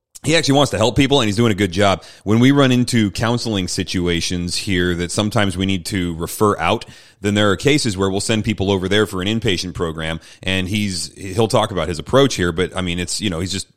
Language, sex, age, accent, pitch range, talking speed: English, male, 30-49, American, 90-110 Hz, 245 wpm